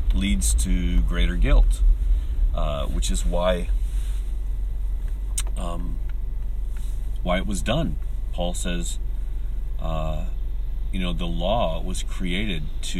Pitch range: 65-100 Hz